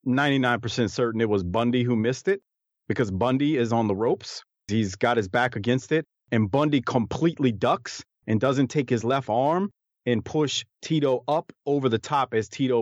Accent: American